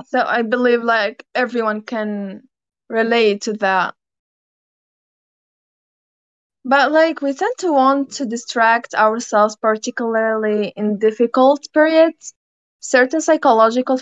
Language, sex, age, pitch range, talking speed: English, female, 20-39, 215-245 Hz, 105 wpm